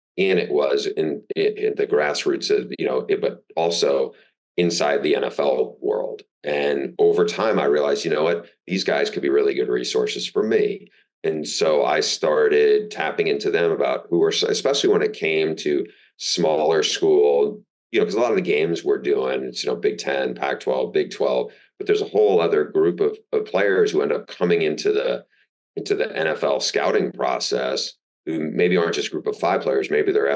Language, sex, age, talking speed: English, male, 40-59, 190 wpm